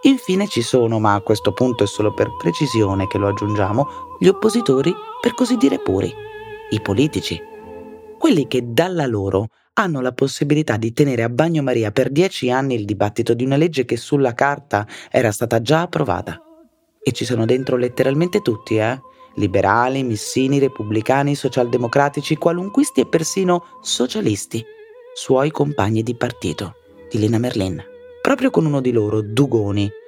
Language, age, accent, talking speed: Italian, 30-49, native, 150 wpm